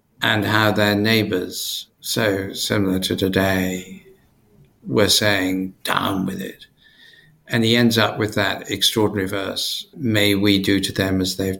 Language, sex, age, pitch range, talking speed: English, male, 60-79, 100-115 Hz, 145 wpm